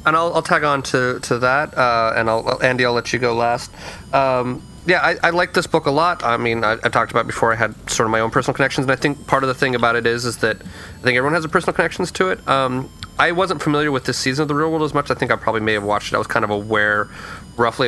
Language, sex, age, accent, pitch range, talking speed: English, male, 30-49, American, 110-130 Hz, 300 wpm